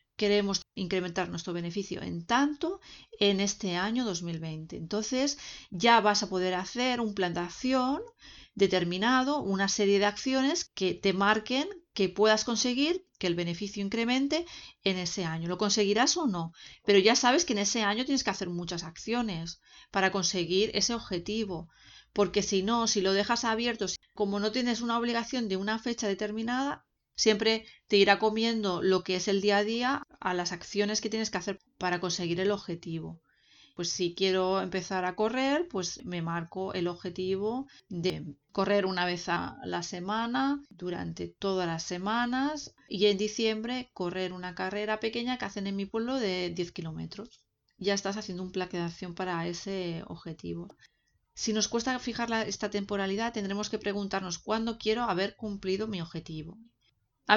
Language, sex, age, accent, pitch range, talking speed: Spanish, female, 40-59, Spanish, 185-230 Hz, 165 wpm